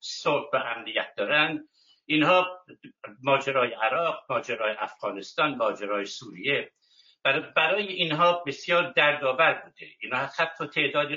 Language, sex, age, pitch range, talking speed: Persian, male, 60-79, 145-195 Hz, 105 wpm